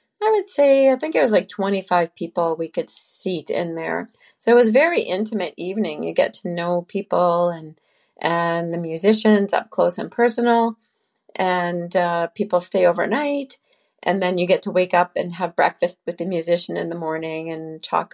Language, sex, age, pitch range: English, female, 40-59, 170-220 Hz